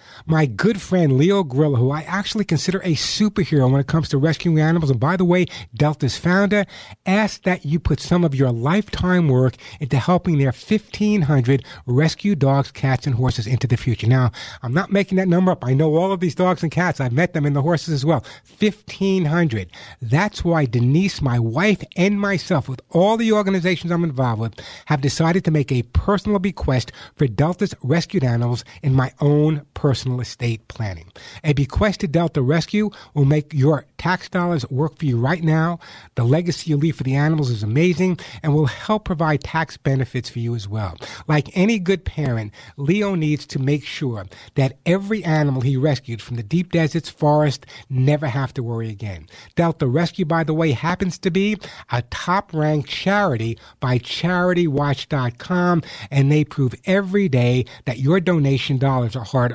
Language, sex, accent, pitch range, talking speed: English, male, American, 130-175 Hz, 180 wpm